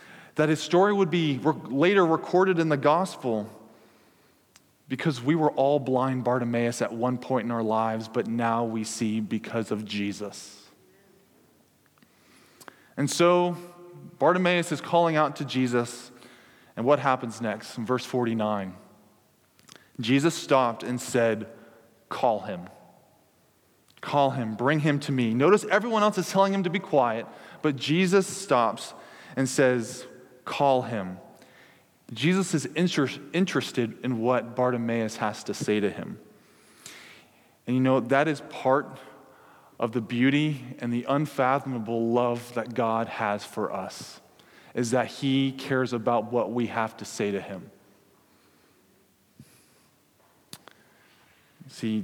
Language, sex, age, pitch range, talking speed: English, male, 20-39, 115-145 Hz, 130 wpm